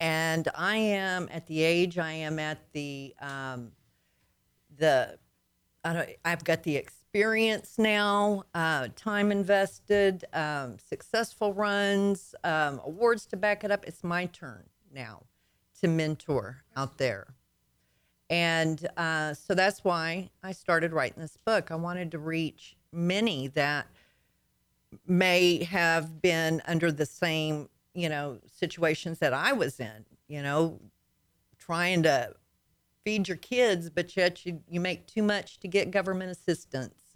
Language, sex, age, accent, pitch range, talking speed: English, female, 50-69, American, 145-180 Hz, 140 wpm